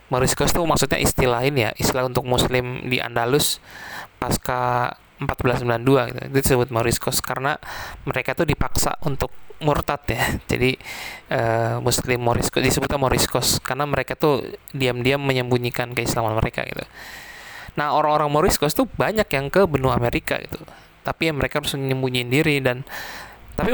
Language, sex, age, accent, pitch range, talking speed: English, male, 20-39, Indonesian, 125-145 Hz, 135 wpm